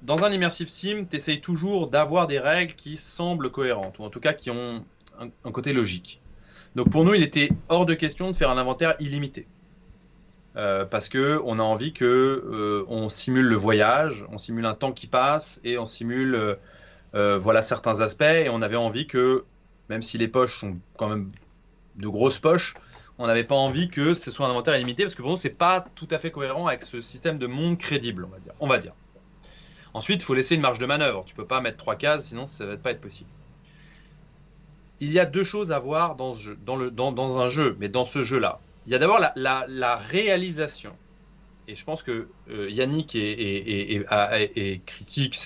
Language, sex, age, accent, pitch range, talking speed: French, male, 20-39, French, 115-165 Hz, 225 wpm